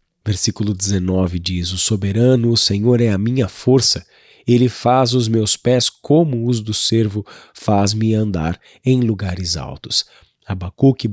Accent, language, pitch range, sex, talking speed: Brazilian, Portuguese, 105-125 Hz, male, 140 wpm